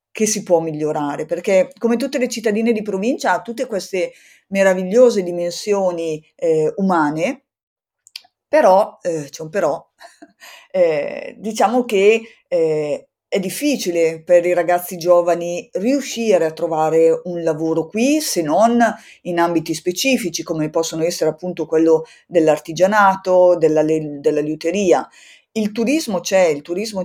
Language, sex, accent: Italian, female, native